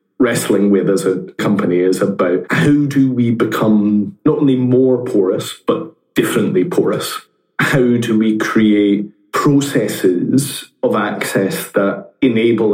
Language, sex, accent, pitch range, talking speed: English, male, British, 100-120 Hz, 125 wpm